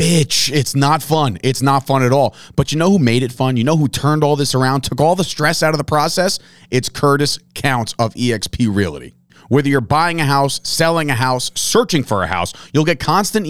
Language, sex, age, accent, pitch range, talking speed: English, male, 30-49, American, 115-155 Hz, 230 wpm